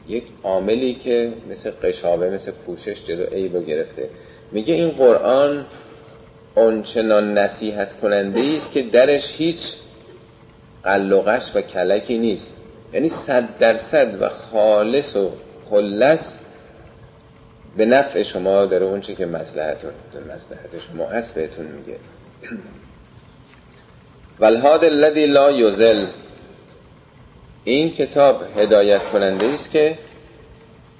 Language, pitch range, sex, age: Persian, 100-145 Hz, male, 40-59